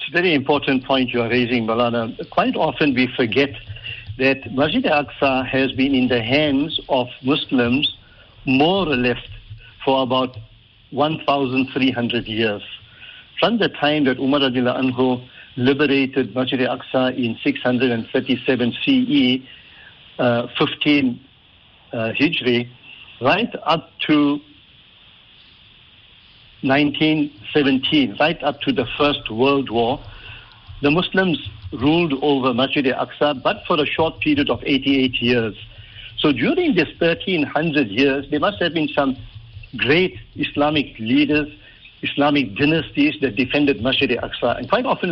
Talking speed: 125 wpm